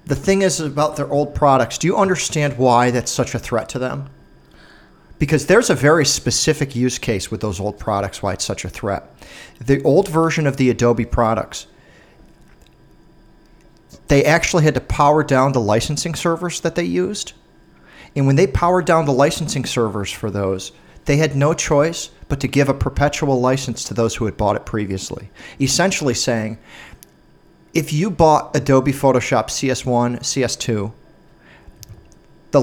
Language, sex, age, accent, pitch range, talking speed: English, male, 40-59, American, 120-155 Hz, 165 wpm